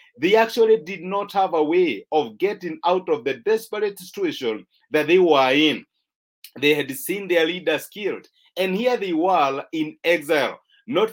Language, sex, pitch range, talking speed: English, male, 155-225 Hz, 165 wpm